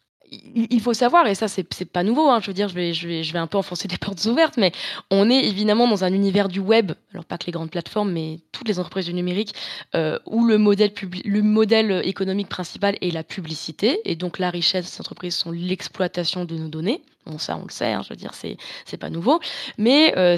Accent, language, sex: French, French, female